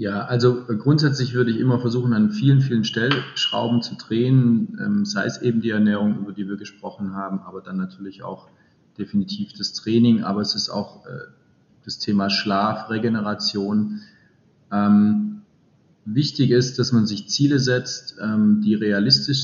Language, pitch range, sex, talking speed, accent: German, 105-125 Hz, male, 155 wpm, German